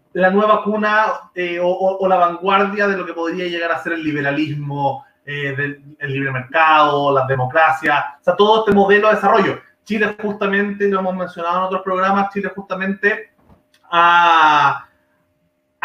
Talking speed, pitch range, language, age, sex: 165 wpm, 160-200 Hz, Spanish, 30-49, male